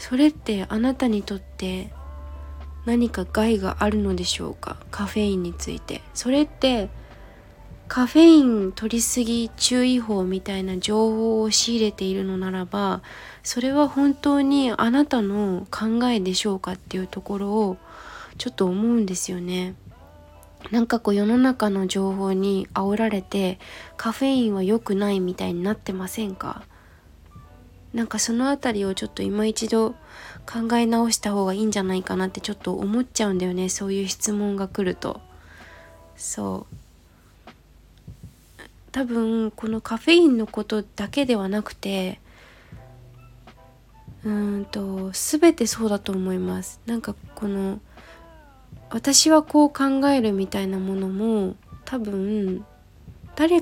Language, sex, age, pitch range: Japanese, female, 20-39, 185-230 Hz